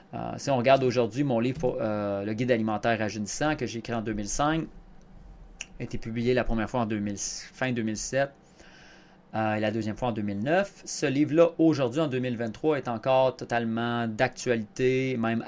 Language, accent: French, Canadian